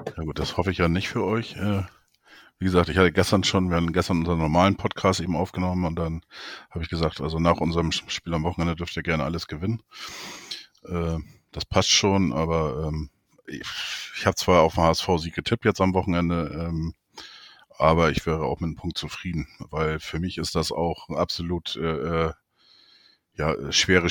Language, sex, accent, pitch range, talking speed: German, male, German, 80-100 Hz, 170 wpm